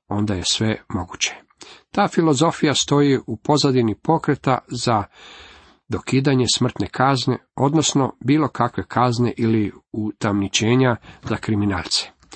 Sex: male